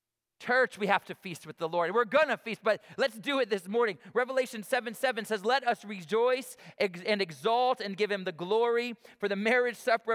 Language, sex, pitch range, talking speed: English, male, 150-215 Hz, 205 wpm